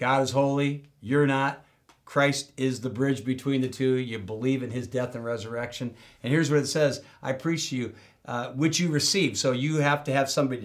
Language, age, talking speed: English, 60-79, 215 wpm